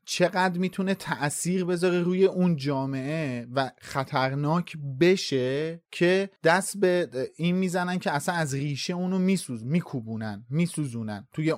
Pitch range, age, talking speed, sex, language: 145-180 Hz, 30-49, 125 wpm, male, Persian